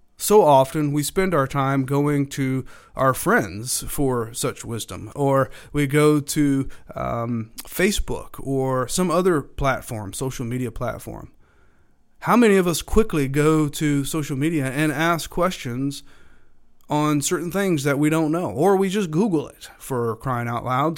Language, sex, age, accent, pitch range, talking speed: English, male, 30-49, American, 130-165 Hz, 155 wpm